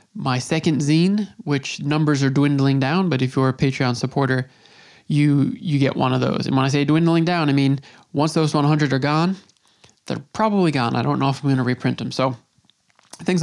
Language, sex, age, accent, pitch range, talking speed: English, male, 20-39, American, 130-165 Hz, 210 wpm